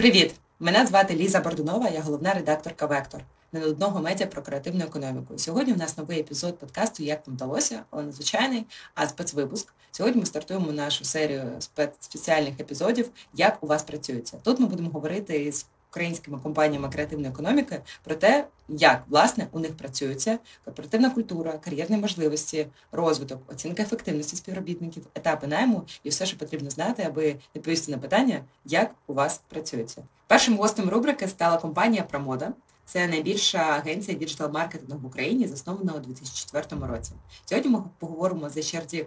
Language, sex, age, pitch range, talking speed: Ukrainian, female, 20-39, 145-185 Hz, 150 wpm